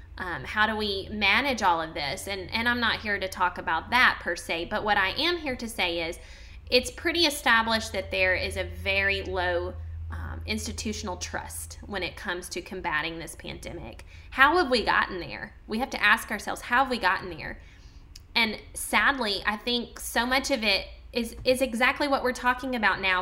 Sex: female